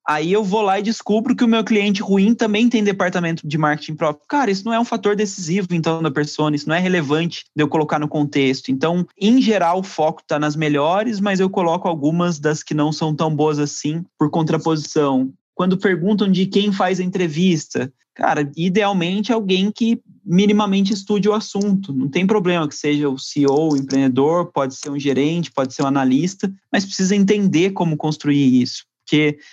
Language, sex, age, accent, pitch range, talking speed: Portuguese, male, 20-39, Brazilian, 150-190 Hz, 195 wpm